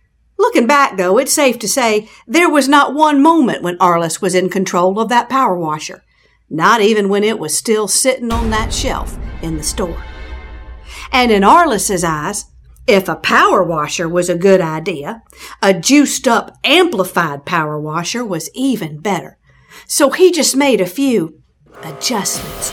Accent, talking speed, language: American, 160 wpm, English